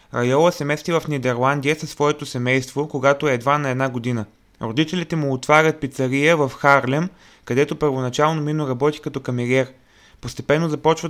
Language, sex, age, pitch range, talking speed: Bulgarian, male, 20-39, 135-160 Hz, 150 wpm